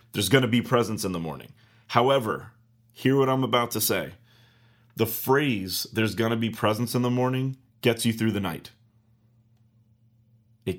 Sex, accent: male, American